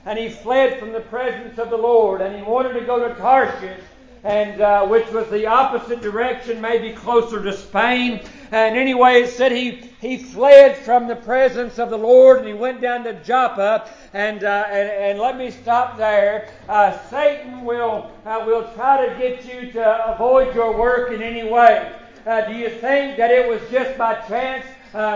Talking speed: 195 wpm